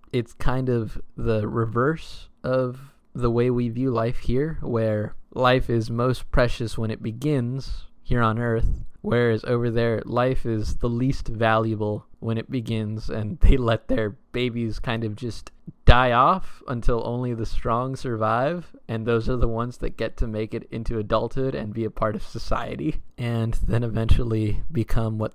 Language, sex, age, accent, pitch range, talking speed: English, male, 20-39, American, 115-130 Hz, 170 wpm